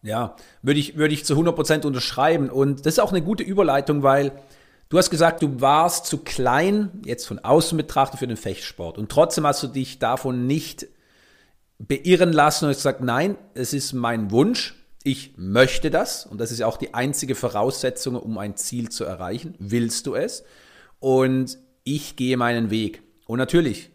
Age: 40-59